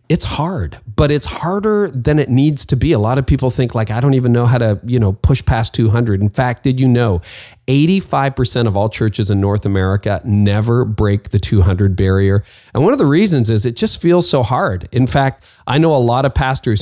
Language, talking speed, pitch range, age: English, 225 wpm, 105-135 Hz, 40-59